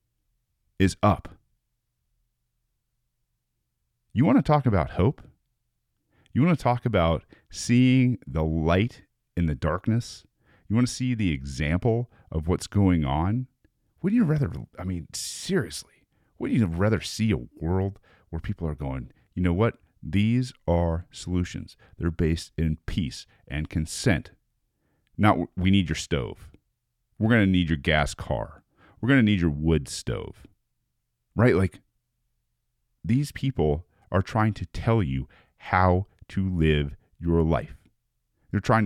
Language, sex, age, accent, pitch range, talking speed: English, male, 40-59, American, 80-115 Hz, 135 wpm